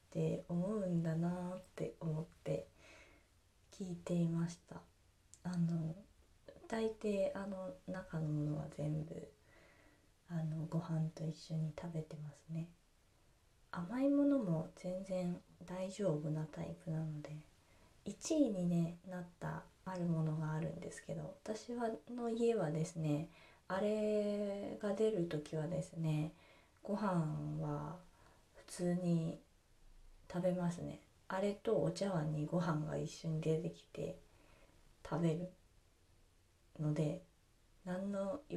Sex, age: female, 20-39